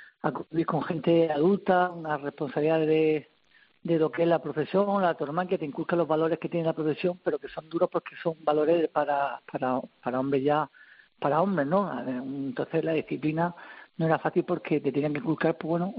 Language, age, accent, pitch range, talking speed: Spanish, 50-69, Spanish, 150-175 Hz, 195 wpm